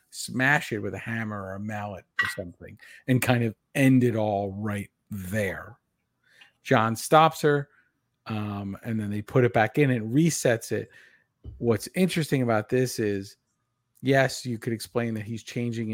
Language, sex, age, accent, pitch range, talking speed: English, male, 40-59, American, 105-125 Hz, 165 wpm